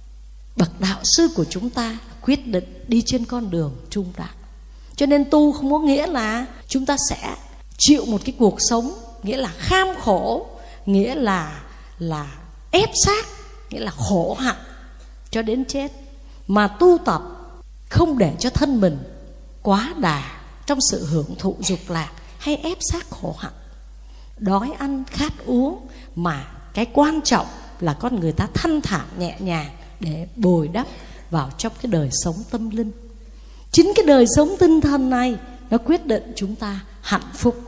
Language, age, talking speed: Vietnamese, 20-39, 170 wpm